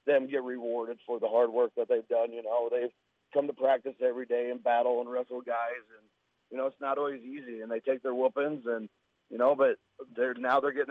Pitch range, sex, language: 125-150 Hz, male, English